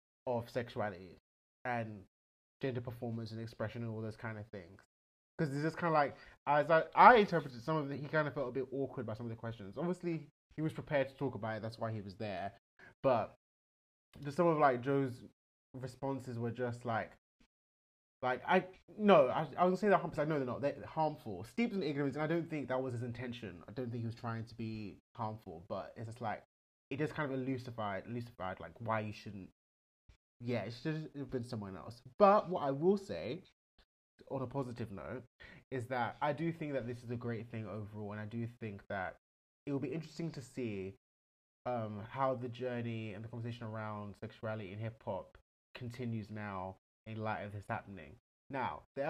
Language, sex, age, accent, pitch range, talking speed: English, male, 20-39, British, 110-140 Hz, 210 wpm